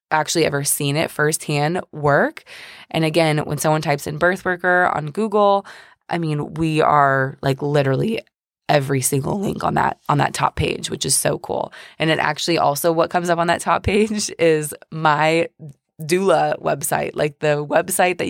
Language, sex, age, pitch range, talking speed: English, female, 20-39, 155-200 Hz, 175 wpm